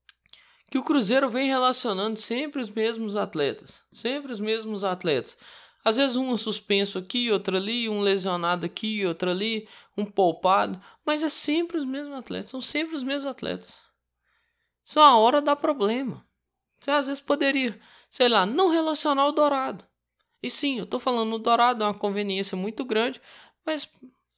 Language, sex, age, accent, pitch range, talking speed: Portuguese, male, 20-39, Brazilian, 210-290 Hz, 165 wpm